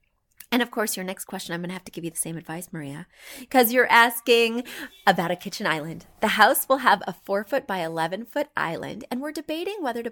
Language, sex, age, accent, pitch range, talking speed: English, female, 30-49, American, 185-270 Hz, 235 wpm